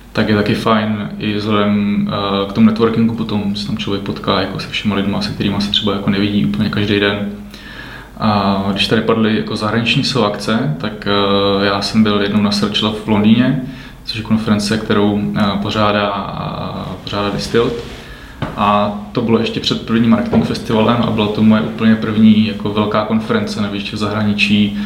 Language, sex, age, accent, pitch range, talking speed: Czech, male, 20-39, native, 105-115 Hz, 170 wpm